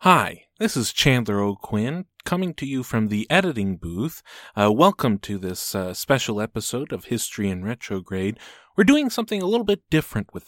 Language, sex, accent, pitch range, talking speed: English, male, American, 105-165 Hz, 180 wpm